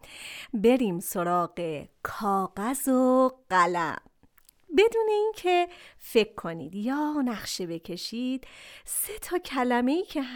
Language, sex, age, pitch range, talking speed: Persian, female, 40-59, 200-275 Hz, 100 wpm